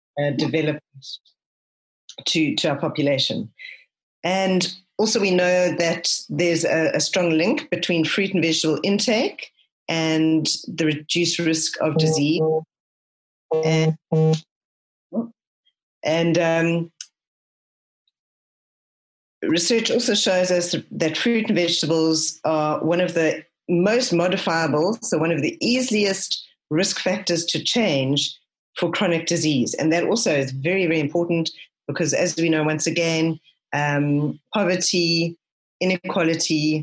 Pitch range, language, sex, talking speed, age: 145-170 Hz, English, female, 115 wpm, 40-59